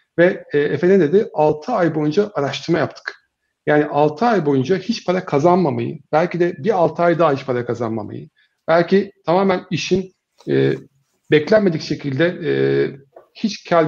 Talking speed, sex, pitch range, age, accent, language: 145 wpm, male, 135-175 Hz, 50-69, native, Turkish